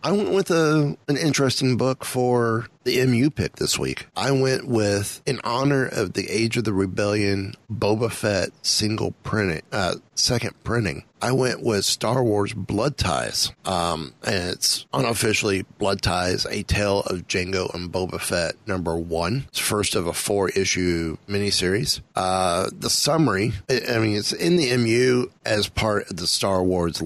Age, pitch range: 30-49, 95-120 Hz